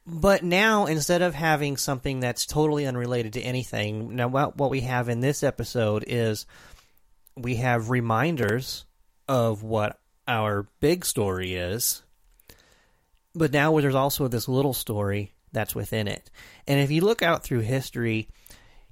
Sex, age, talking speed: male, 30-49, 145 wpm